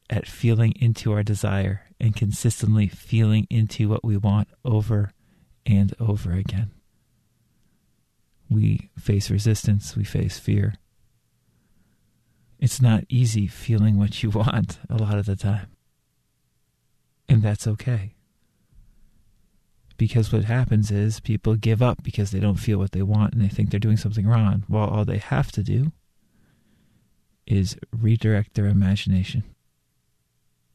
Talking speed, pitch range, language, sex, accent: 135 wpm, 105-115 Hz, English, male, American